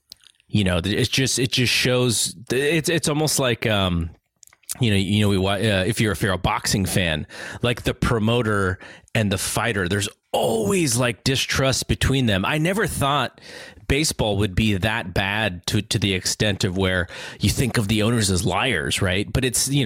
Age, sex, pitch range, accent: 30-49, male, 100-125 Hz, American